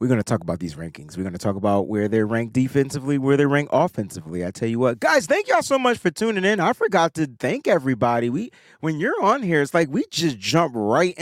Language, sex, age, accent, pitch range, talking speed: English, male, 30-49, American, 120-160 Hz, 260 wpm